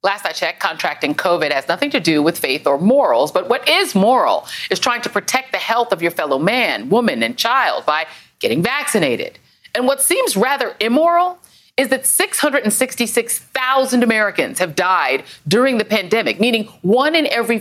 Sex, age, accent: female, 40-59, American